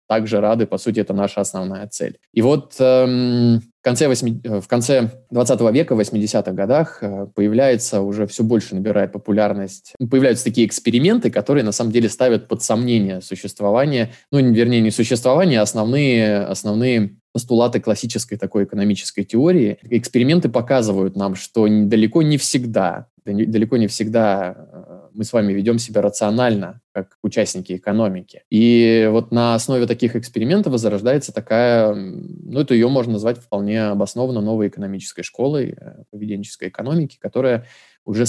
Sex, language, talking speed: male, Russian, 140 wpm